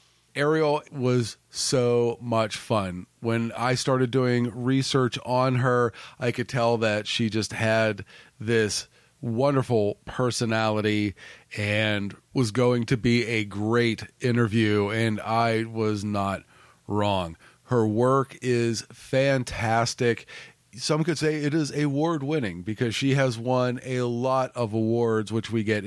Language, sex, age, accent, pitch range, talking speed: English, male, 40-59, American, 110-125 Hz, 130 wpm